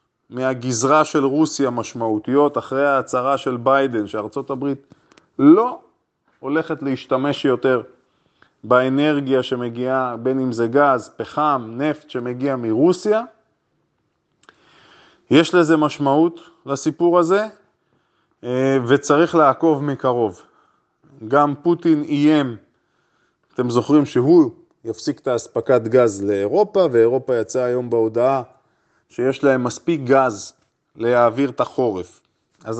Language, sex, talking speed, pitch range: Hebrew, male, 100 wpm, 125-160 Hz